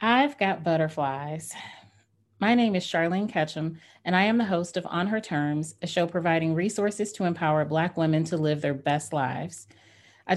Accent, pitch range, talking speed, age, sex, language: American, 145-180 Hz, 180 wpm, 30-49, female, English